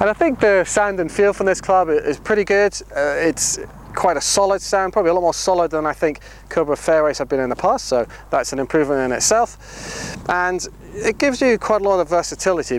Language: English